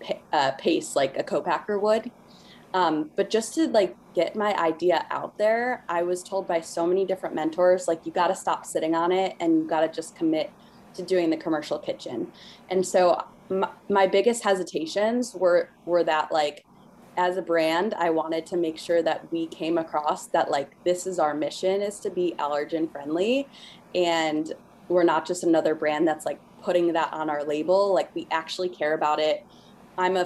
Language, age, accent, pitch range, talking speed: English, 20-39, American, 160-195 Hz, 190 wpm